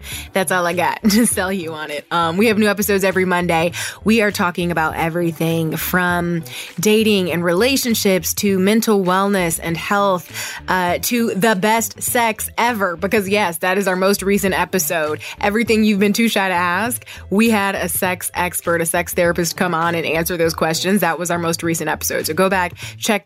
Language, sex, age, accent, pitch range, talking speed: English, female, 20-39, American, 170-220 Hz, 195 wpm